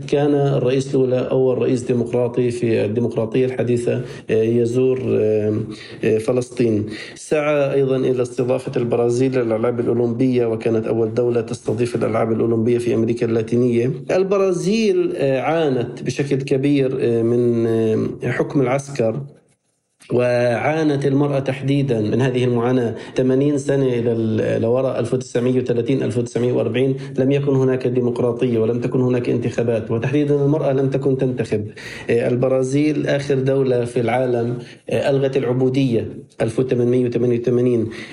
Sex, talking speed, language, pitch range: male, 105 wpm, Arabic, 120-140 Hz